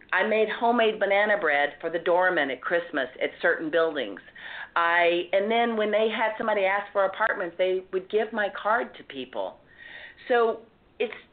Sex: female